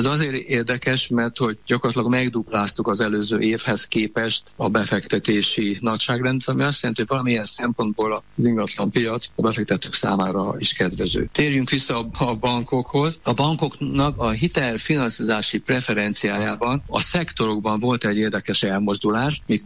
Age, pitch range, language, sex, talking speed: 50-69, 105-125 Hz, Hungarian, male, 135 wpm